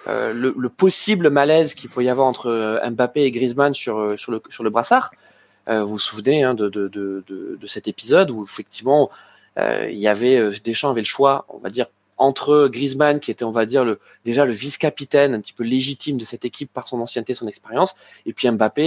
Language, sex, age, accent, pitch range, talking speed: French, male, 20-39, French, 120-165 Hz, 225 wpm